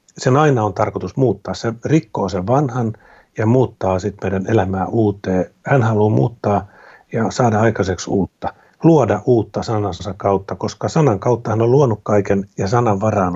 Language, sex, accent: Finnish, male, native